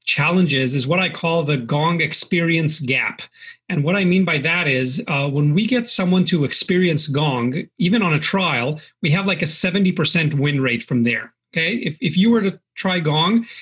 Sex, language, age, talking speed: male, English, 30-49, 205 wpm